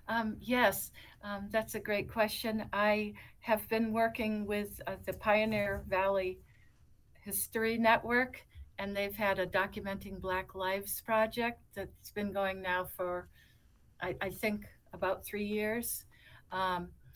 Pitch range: 180-210 Hz